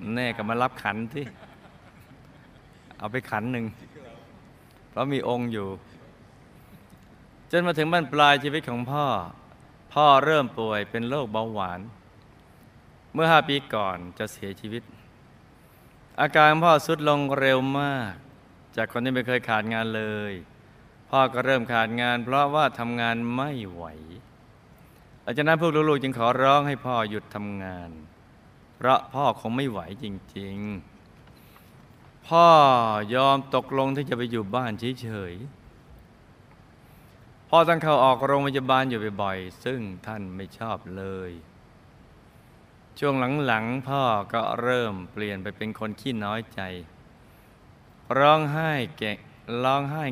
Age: 20-39